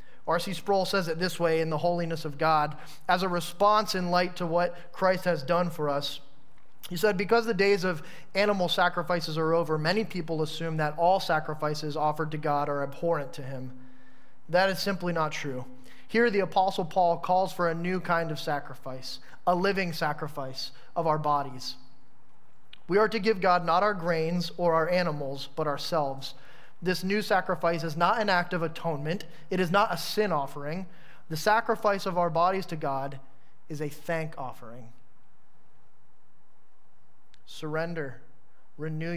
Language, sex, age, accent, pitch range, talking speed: English, male, 30-49, American, 150-185 Hz, 165 wpm